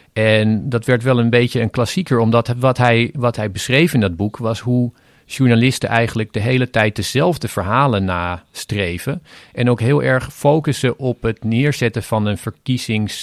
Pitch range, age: 105-130 Hz, 40-59